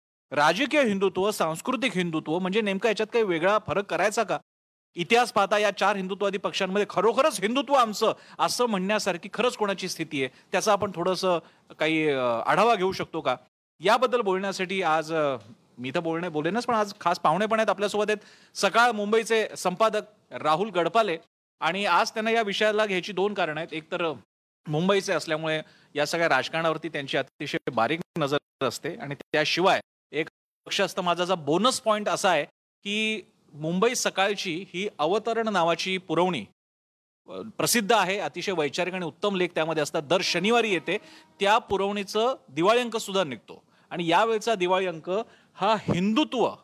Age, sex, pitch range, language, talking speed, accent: 40-59, male, 165-215 Hz, Marathi, 145 wpm, native